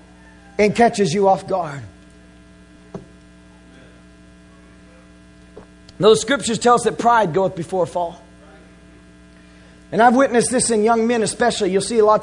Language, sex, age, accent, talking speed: English, male, 30-49, American, 130 wpm